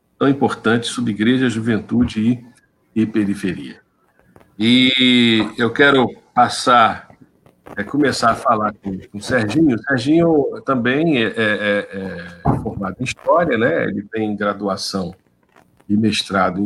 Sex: male